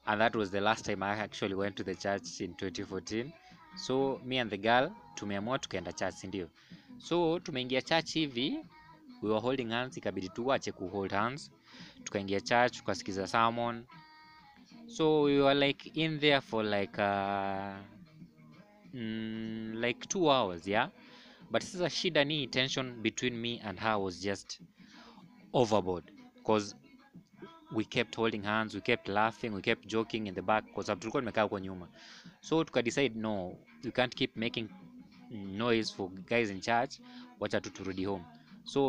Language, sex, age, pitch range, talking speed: English, male, 20-39, 100-135 Hz, 155 wpm